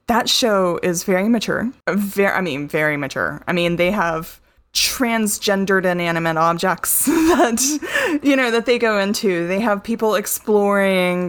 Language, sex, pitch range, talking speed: English, female, 165-205 Hz, 145 wpm